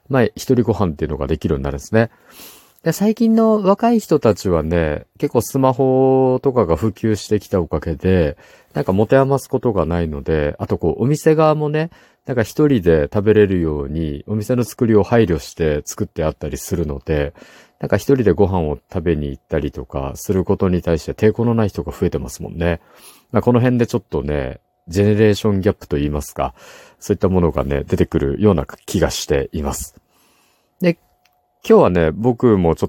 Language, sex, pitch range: Japanese, male, 80-125 Hz